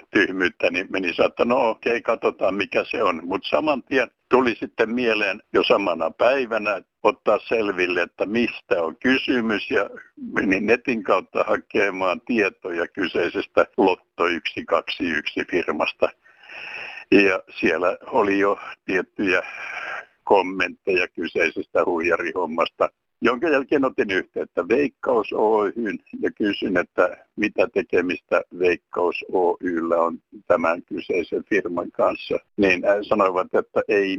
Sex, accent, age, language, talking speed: male, native, 60-79, Finnish, 115 wpm